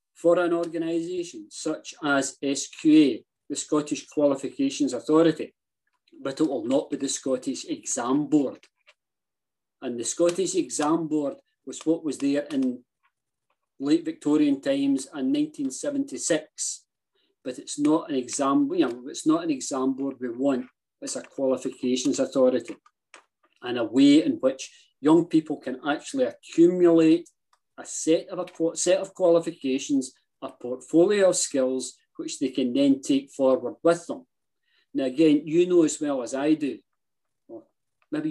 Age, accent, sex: 40-59, British, male